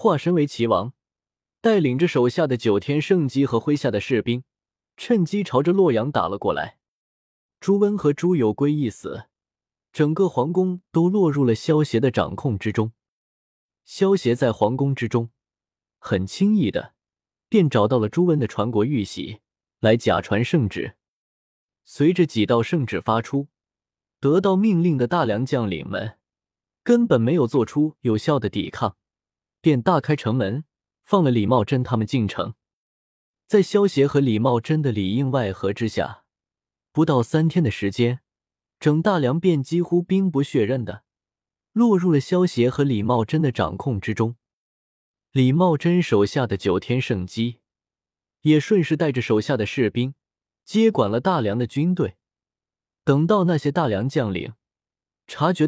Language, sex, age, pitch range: Chinese, male, 20-39, 110-165 Hz